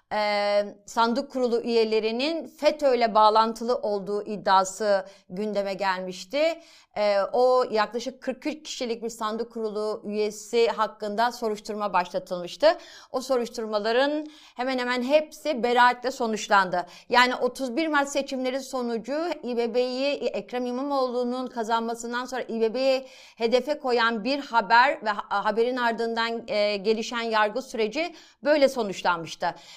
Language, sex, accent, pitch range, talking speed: Turkish, female, native, 210-270 Hz, 100 wpm